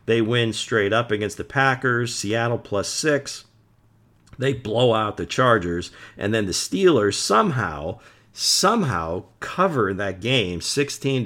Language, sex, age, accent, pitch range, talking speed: English, male, 50-69, American, 105-135 Hz, 135 wpm